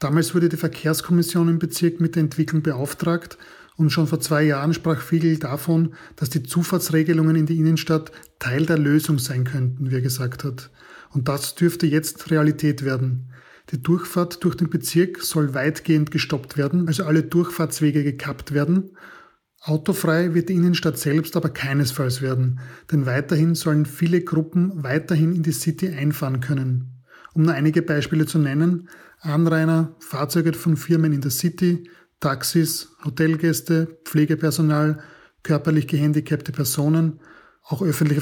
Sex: male